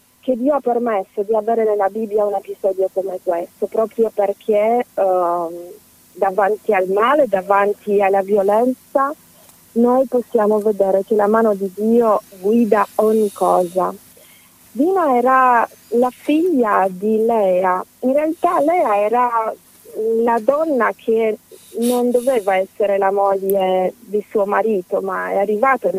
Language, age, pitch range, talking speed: Italian, 30-49, 195-240 Hz, 130 wpm